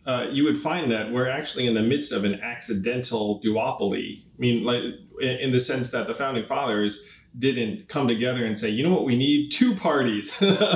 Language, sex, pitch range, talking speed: English, male, 115-155 Hz, 205 wpm